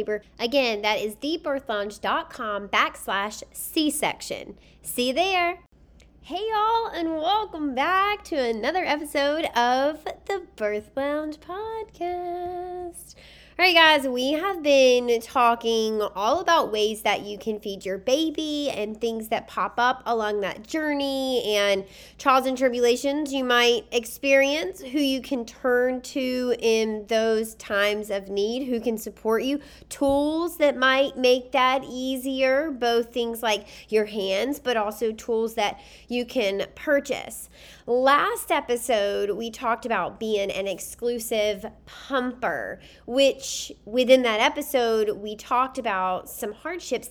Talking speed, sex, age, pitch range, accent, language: 130 wpm, female, 20-39, 215-285 Hz, American, English